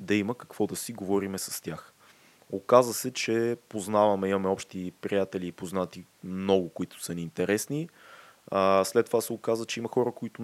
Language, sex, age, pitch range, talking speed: Bulgarian, male, 20-39, 95-125 Hz, 170 wpm